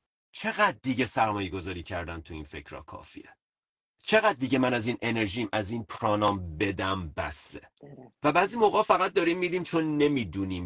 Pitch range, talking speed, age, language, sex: 100-130 Hz, 165 wpm, 40-59, Persian, male